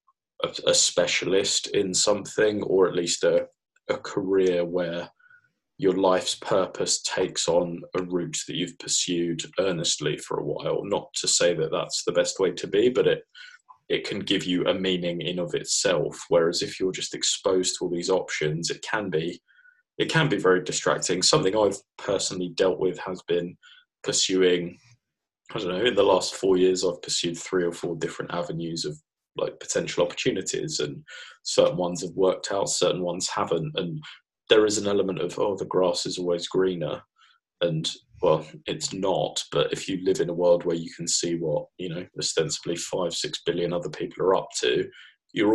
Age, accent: 20-39, British